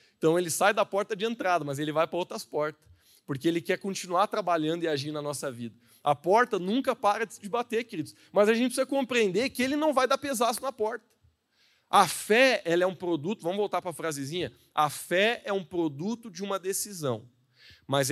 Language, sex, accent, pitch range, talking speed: Portuguese, male, Brazilian, 140-200 Hz, 210 wpm